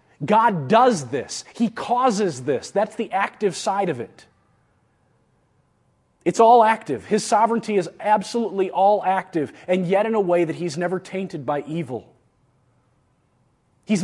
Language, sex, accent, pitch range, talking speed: English, male, American, 130-220 Hz, 140 wpm